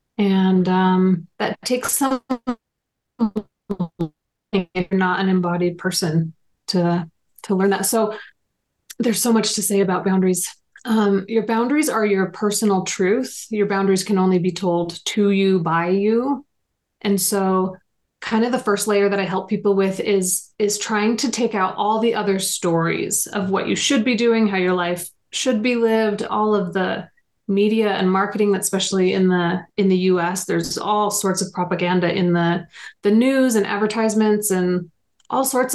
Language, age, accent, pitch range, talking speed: English, 30-49, American, 185-220 Hz, 170 wpm